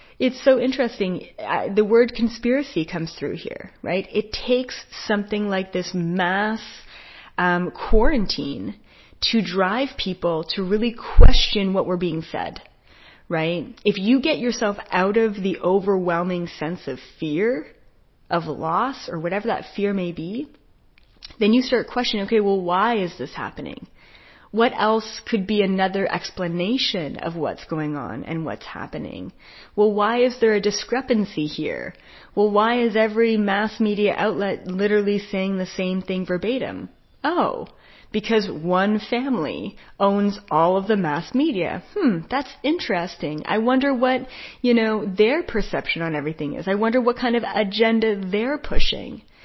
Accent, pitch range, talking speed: American, 180-235 Hz, 150 wpm